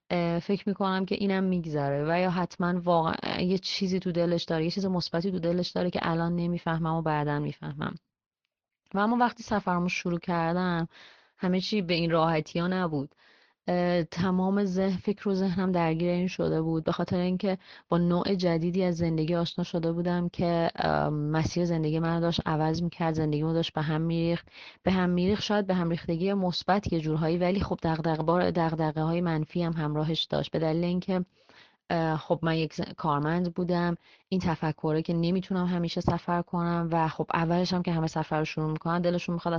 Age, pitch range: 30-49, 160-180 Hz